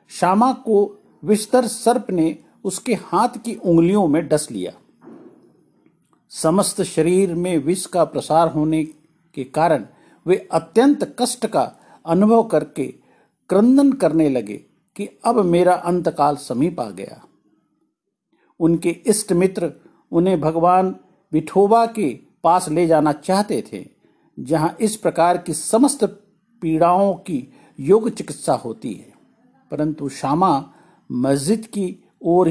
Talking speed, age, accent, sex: 120 wpm, 50-69, native, male